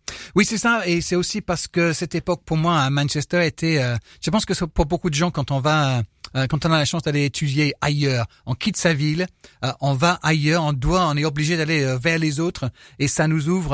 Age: 30-49